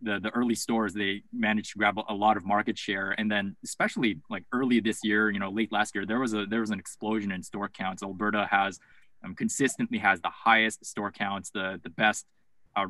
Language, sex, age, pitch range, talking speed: English, male, 20-39, 100-115 Hz, 225 wpm